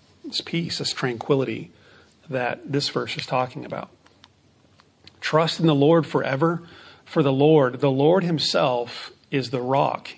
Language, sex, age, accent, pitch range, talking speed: English, male, 40-59, American, 125-155 Hz, 140 wpm